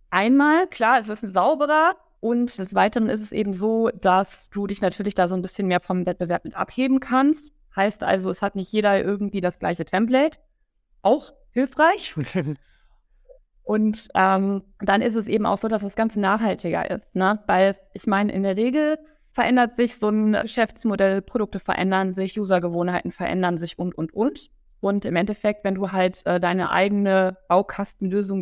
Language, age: German, 20-39